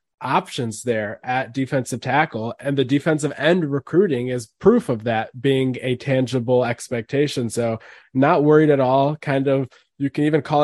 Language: English